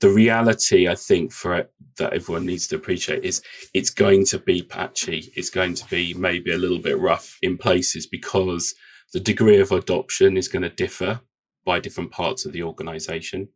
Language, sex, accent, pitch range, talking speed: English, male, British, 90-135 Hz, 195 wpm